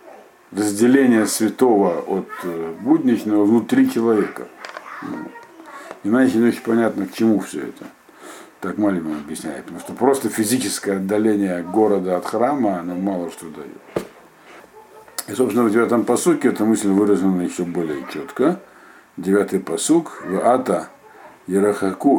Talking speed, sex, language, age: 120 wpm, male, Russian, 50-69